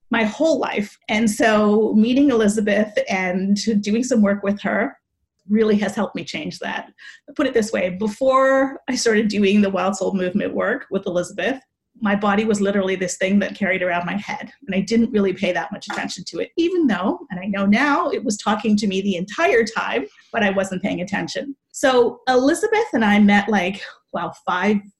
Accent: American